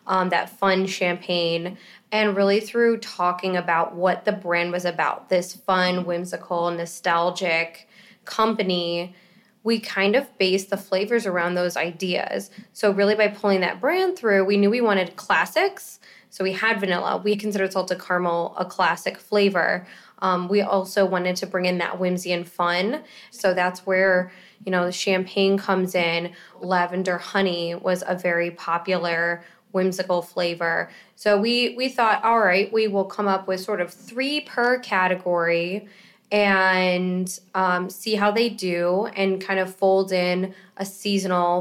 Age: 20-39